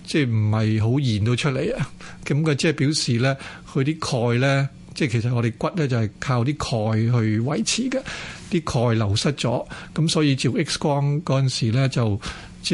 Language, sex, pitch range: Chinese, male, 120-145 Hz